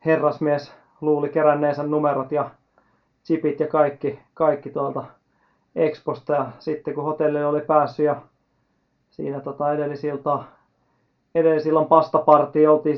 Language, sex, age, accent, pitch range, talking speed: Finnish, male, 30-49, native, 145-160 Hz, 115 wpm